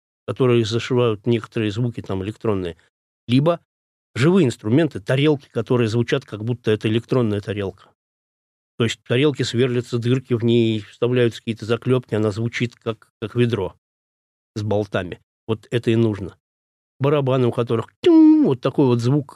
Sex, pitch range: male, 110-135 Hz